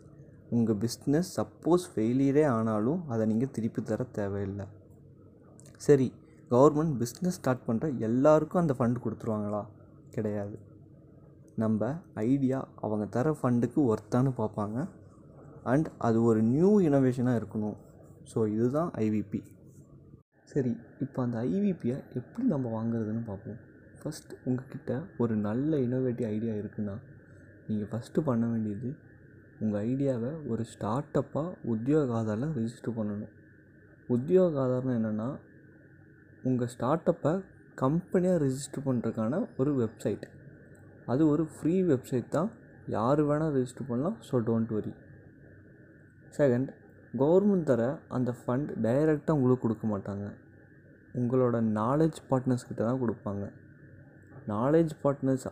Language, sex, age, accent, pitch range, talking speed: Tamil, male, 20-39, native, 110-145 Hz, 110 wpm